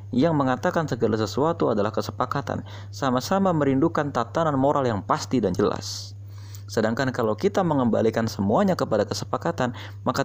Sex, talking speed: male, 130 wpm